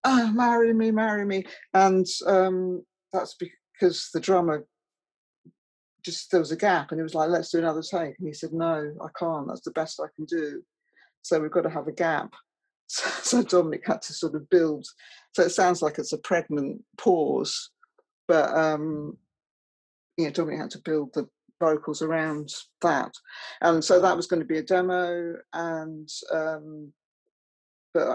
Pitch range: 160-185 Hz